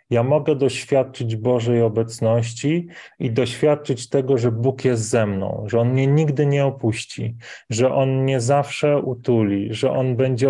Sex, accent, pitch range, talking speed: male, native, 115-140 Hz, 155 wpm